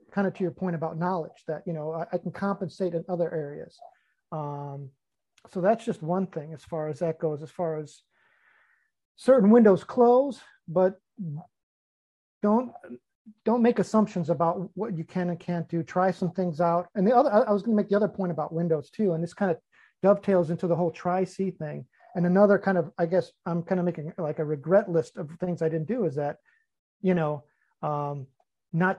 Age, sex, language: 40-59, male, English